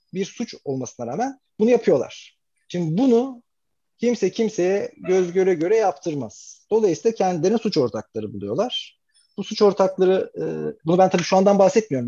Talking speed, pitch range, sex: 140 wpm, 150-210 Hz, male